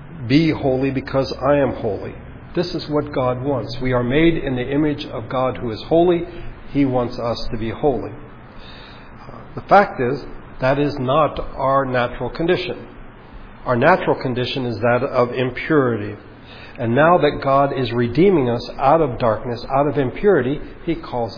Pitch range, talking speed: 115-135 Hz, 165 wpm